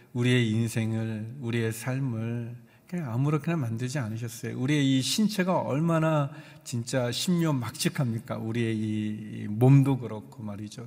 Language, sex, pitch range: Korean, male, 115-150 Hz